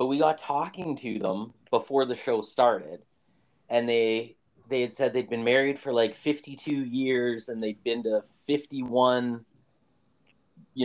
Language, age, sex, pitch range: English, 30-49, male, 115-140 Hz